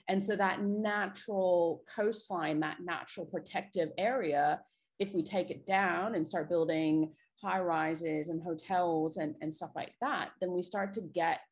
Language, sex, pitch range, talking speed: English, female, 160-195 Hz, 160 wpm